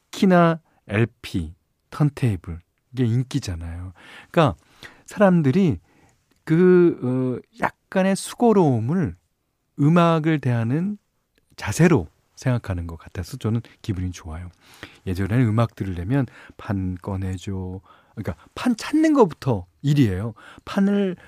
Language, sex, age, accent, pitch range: Korean, male, 40-59, native, 105-165 Hz